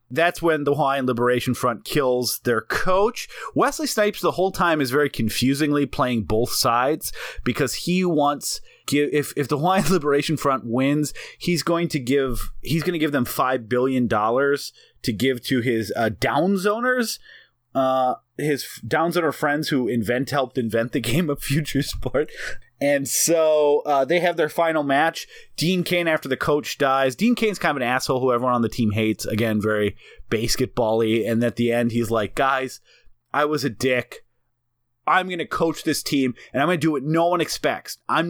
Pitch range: 125-160 Hz